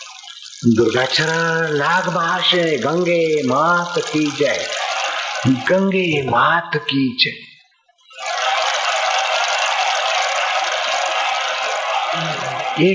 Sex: male